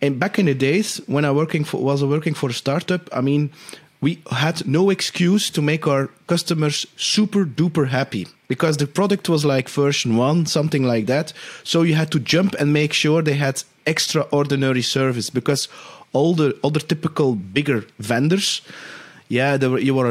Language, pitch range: English, 135-160 Hz